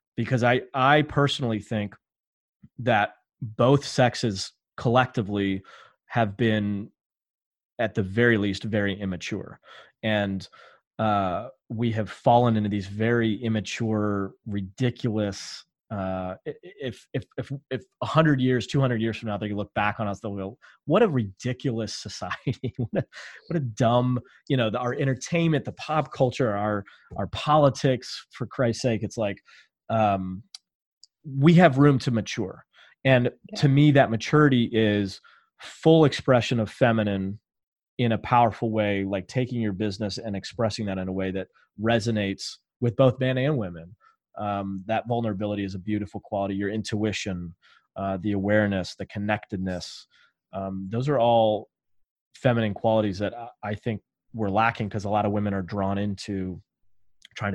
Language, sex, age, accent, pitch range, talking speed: English, male, 30-49, American, 100-125 Hz, 150 wpm